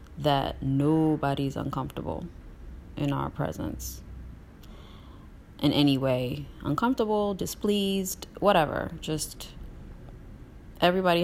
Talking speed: 75 wpm